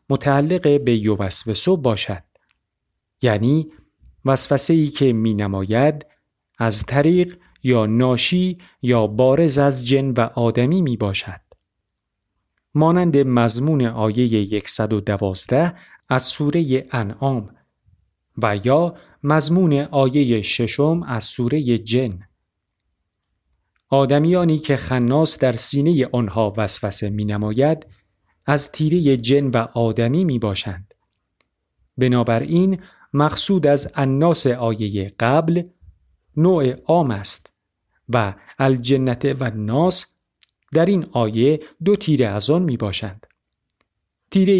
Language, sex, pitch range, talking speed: Persian, male, 105-150 Hz, 100 wpm